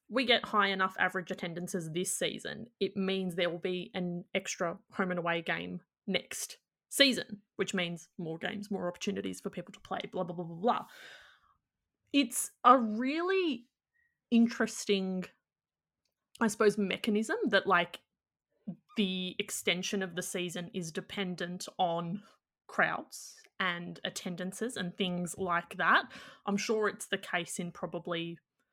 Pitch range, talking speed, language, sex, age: 175-210 Hz, 140 wpm, English, female, 20-39